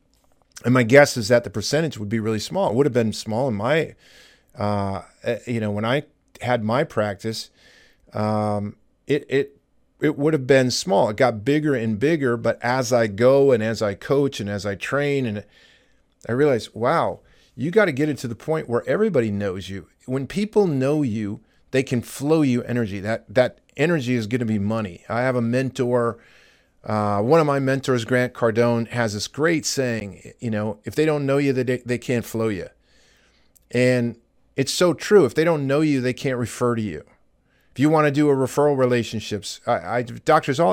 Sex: male